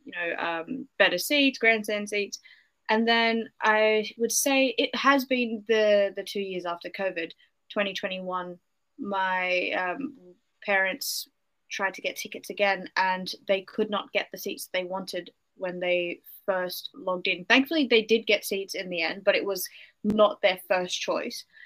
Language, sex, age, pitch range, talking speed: English, female, 20-39, 185-230 Hz, 165 wpm